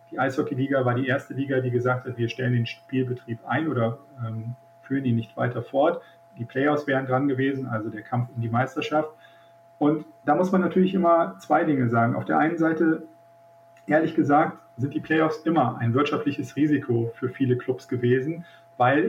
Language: German